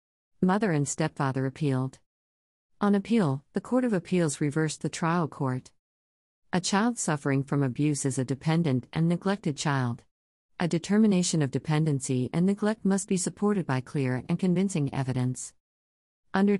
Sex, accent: female, American